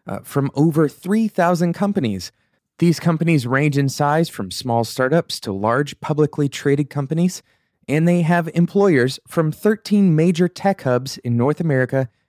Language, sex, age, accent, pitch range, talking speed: English, male, 30-49, American, 115-170 Hz, 145 wpm